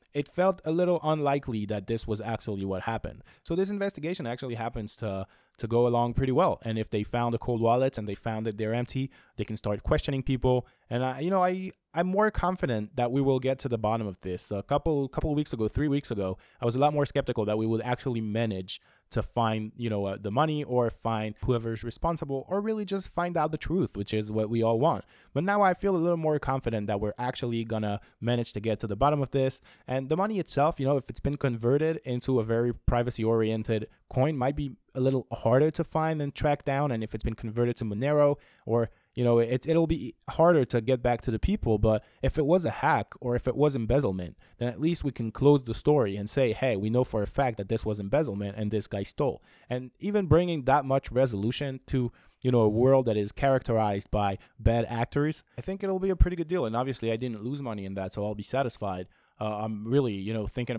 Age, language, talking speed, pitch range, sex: 20-39, English, 245 wpm, 110-140 Hz, male